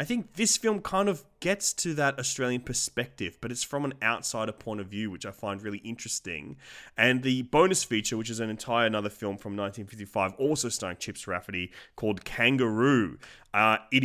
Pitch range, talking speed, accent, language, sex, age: 100-125 Hz, 190 wpm, Australian, English, male, 20-39